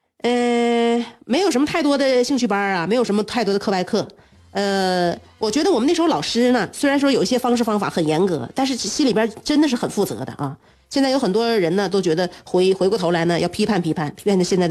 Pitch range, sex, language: 180-255 Hz, female, Chinese